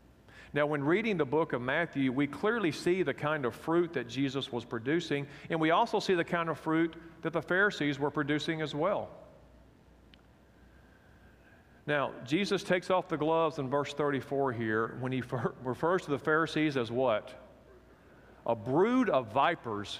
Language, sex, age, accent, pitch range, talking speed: English, male, 40-59, American, 135-170 Hz, 165 wpm